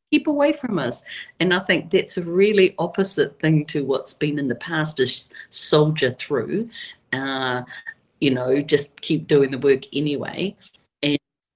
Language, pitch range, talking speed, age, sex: English, 130-170 Hz, 160 wpm, 40-59, female